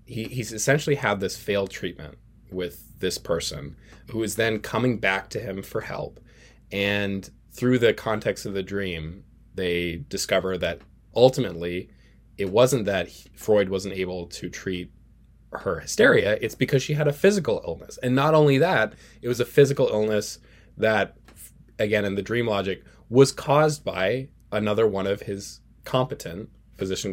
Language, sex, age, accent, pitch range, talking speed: English, male, 20-39, American, 95-120 Hz, 155 wpm